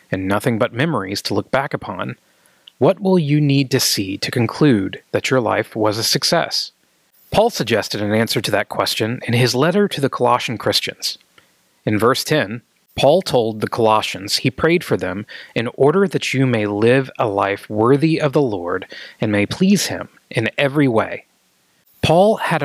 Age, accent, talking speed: 30-49, American, 180 wpm